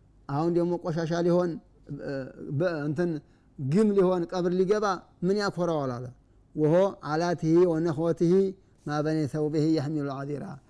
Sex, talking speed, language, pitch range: male, 140 wpm, Amharic, 130-180 Hz